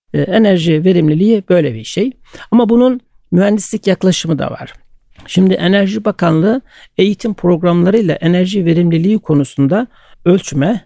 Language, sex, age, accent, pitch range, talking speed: Turkish, male, 60-79, native, 155-205 Hz, 110 wpm